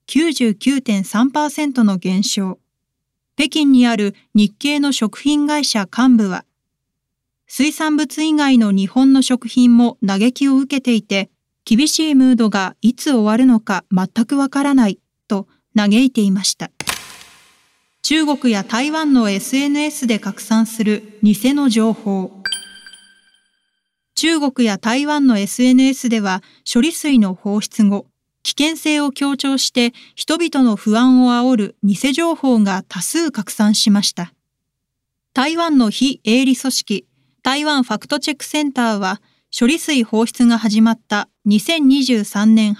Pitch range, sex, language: 210-280 Hz, female, Japanese